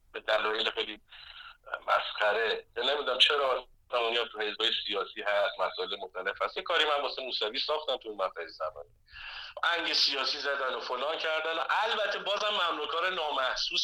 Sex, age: male, 50-69